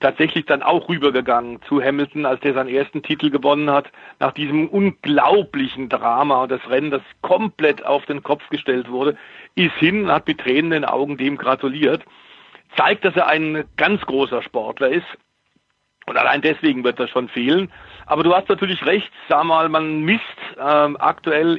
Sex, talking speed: male, 170 wpm